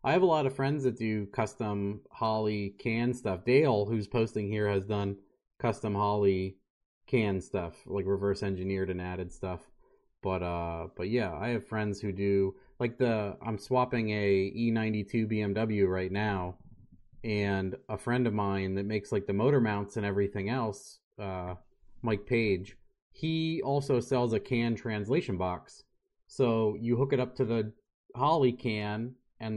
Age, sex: 30-49, male